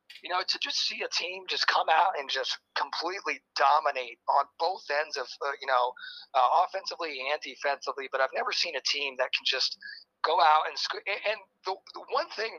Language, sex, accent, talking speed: English, male, American, 205 wpm